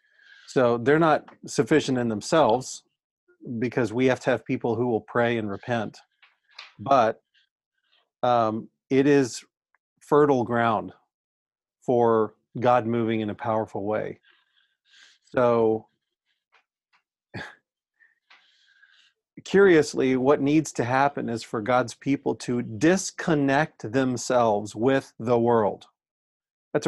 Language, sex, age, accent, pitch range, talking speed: English, male, 40-59, American, 115-155 Hz, 105 wpm